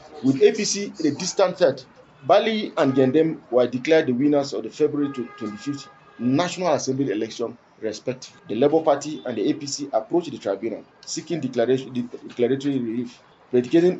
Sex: male